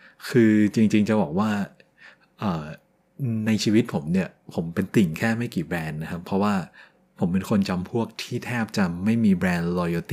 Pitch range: 95-140 Hz